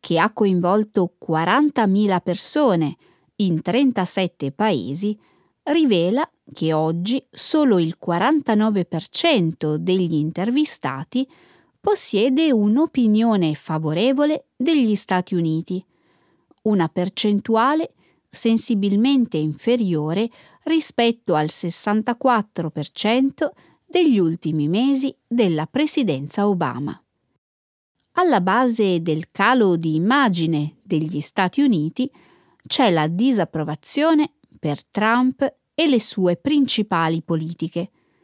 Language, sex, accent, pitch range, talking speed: Italian, female, native, 165-260 Hz, 85 wpm